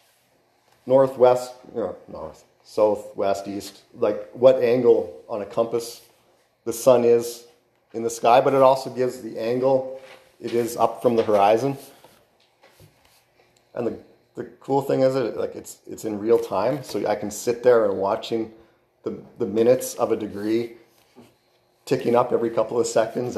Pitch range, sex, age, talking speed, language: 115-150 Hz, male, 30-49, 165 wpm, English